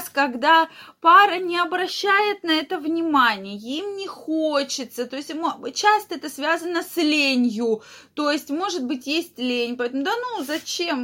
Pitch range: 240-315 Hz